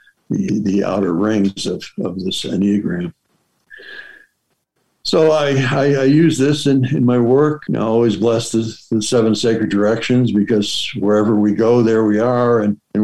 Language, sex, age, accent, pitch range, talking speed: English, male, 60-79, American, 110-135 Hz, 170 wpm